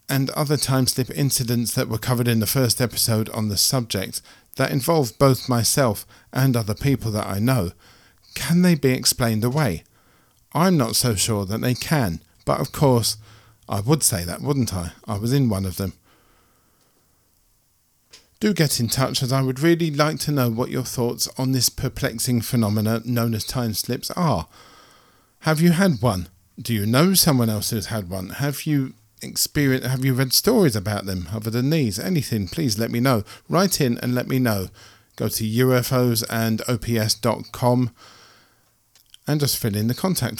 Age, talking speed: 50-69, 175 wpm